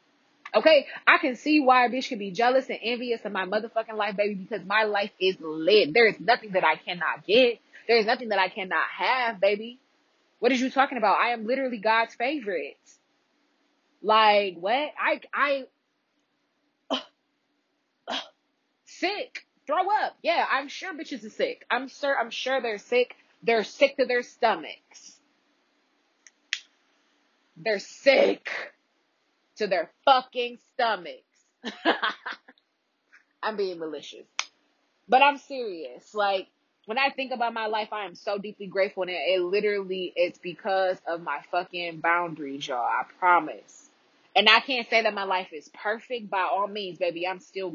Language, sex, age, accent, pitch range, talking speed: English, female, 20-39, American, 190-270 Hz, 155 wpm